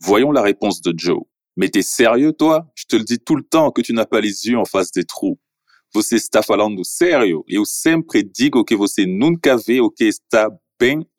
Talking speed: 175 wpm